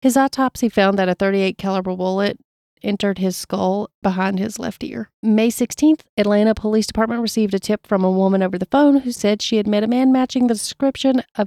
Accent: American